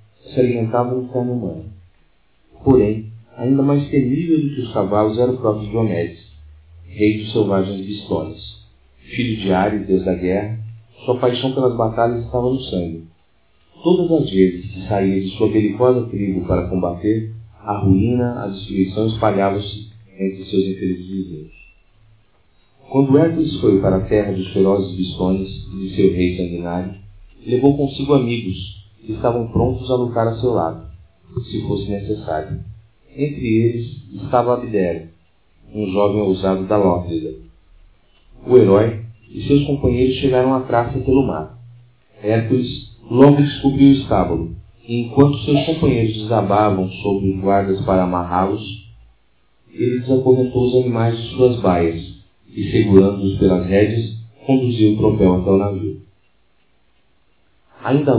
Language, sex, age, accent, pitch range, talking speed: Portuguese, male, 40-59, Brazilian, 95-125 Hz, 140 wpm